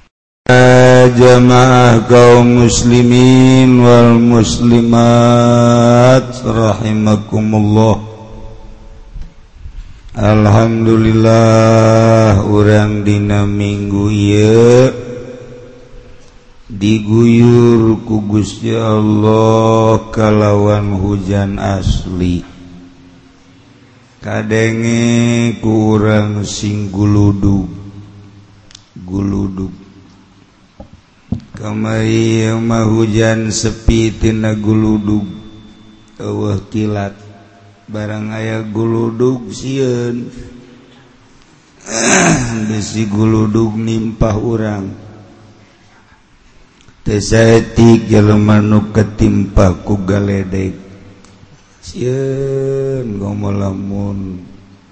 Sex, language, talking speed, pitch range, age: male, Indonesian, 50 wpm, 100-115 Hz, 50-69